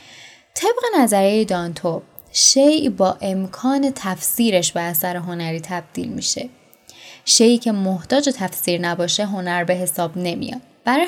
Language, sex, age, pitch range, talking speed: Persian, female, 10-29, 185-245 Hz, 120 wpm